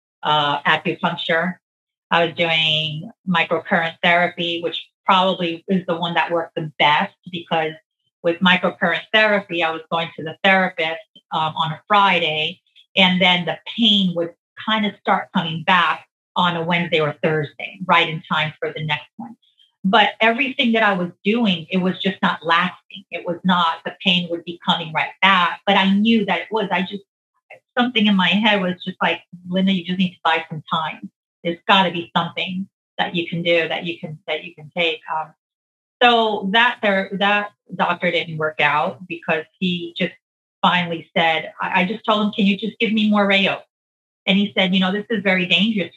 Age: 40-59